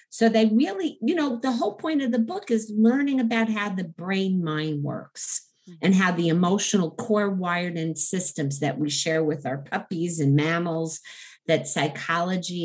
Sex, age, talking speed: female, 50-69, 175 wpm